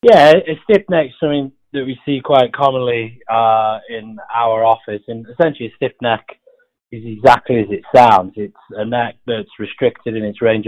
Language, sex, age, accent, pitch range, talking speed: English, male, 20-39, British, 110-135 Hz, 180 wpm